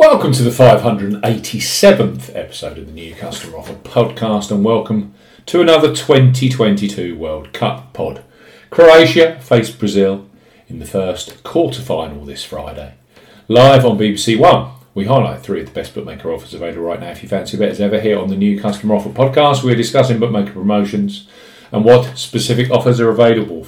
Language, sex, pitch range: English, male, 100-130 Hz